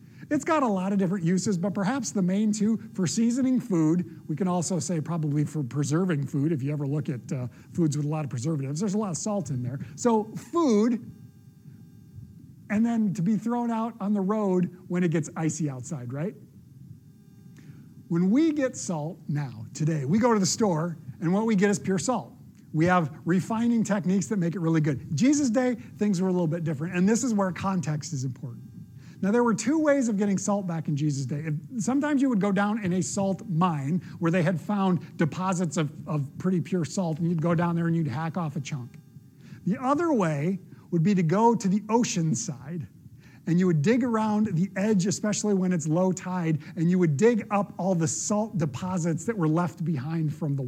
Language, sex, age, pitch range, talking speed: English, male, 50-69, 155-205 Hz, 215 wpm